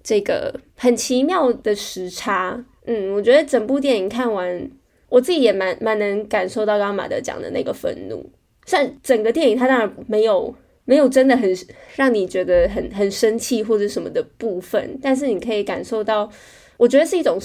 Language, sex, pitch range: Chinese, female, 210-270 Hz